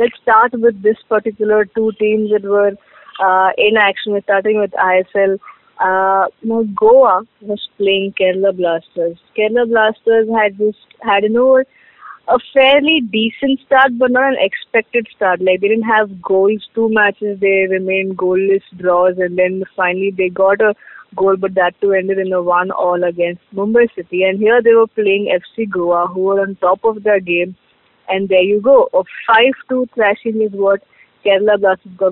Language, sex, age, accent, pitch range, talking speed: English, female, 20-39, Indian, 190-225 Hz, 175 wpm